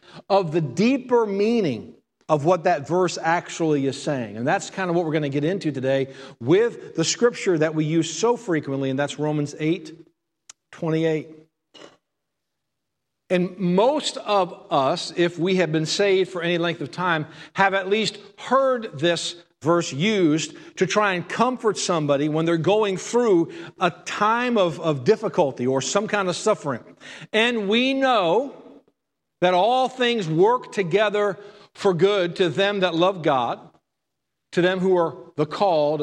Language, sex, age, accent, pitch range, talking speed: English, male, 50-69, American, 160-215 Hz, 160 wpm